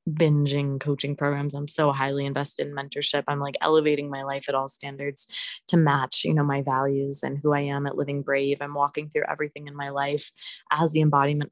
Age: 20-39